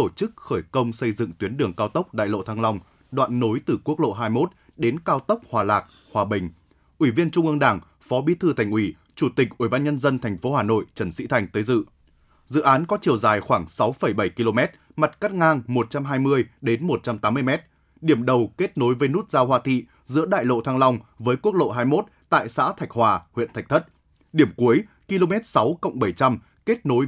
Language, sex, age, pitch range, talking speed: Vietnamese, male, 20-39, 115-155 Hz, 220 wpm